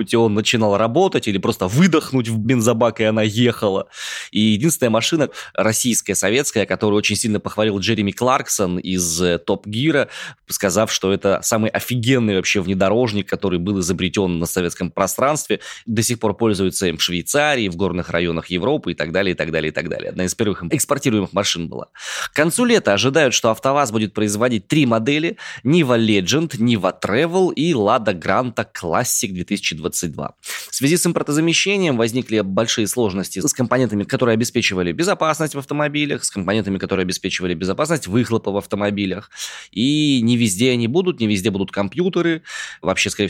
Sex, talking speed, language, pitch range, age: male, 160 wpm, Russian, 95-130 Hz, 20-39